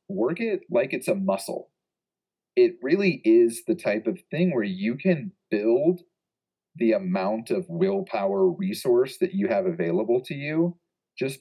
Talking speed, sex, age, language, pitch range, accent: 155 wpm, male, 30-49, English, 165-190 Hz, American